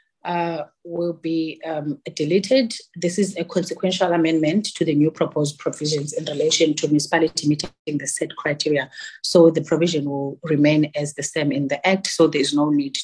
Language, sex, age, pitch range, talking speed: English, female, 30-49, 145-185 Hz, 175 wpm